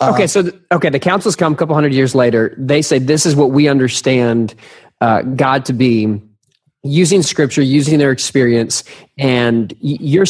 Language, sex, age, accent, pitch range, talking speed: English, male, 20-39, American, 125-160 Hz, 170 wpm